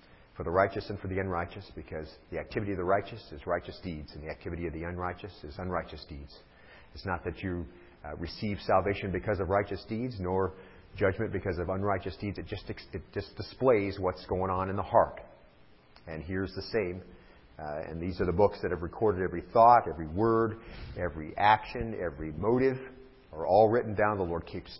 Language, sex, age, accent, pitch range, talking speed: English, male, 40-59, American, 85-105 Hz, 195 wpm